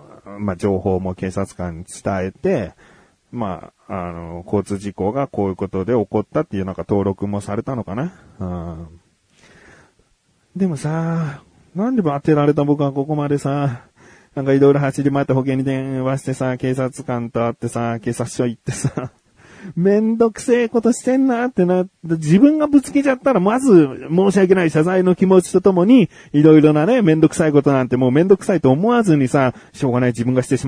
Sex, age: male, 30-49